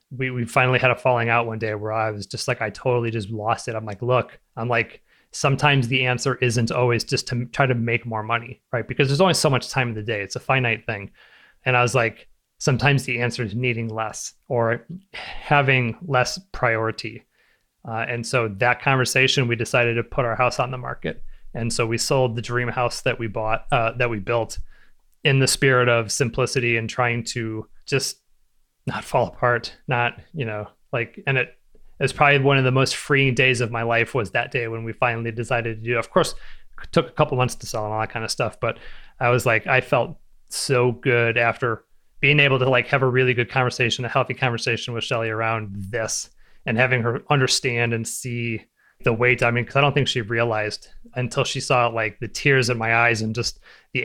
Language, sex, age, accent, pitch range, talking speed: English, male, 30-49, American, 115-130 Hz, 220 wpm